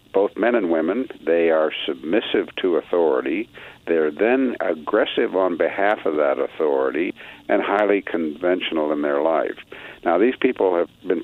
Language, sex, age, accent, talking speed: English, male, 60-79, American, 150 wpm